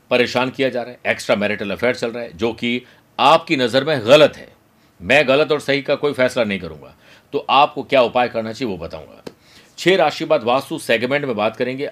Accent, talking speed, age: native, 215 wpm, 50-69